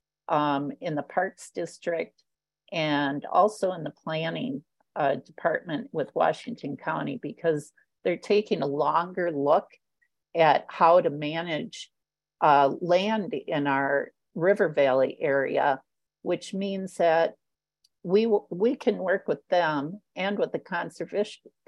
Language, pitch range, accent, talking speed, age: English, 145-195 Hz, American, 125 wpm, 50-69